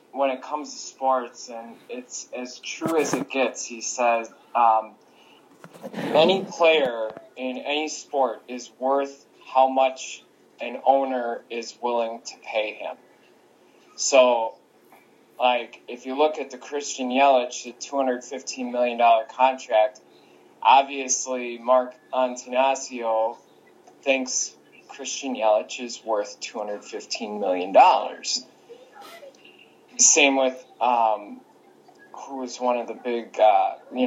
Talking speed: 115 wpm